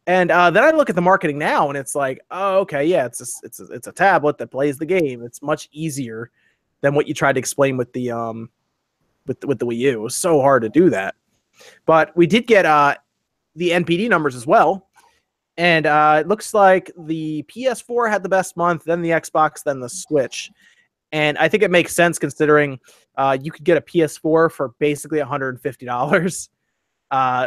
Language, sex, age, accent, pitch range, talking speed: English, male, 20-39, American, 135-180 Hz, 205 wpm